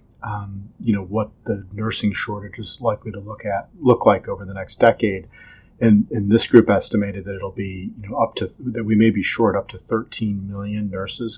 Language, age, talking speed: English, 40-59, 215 wpm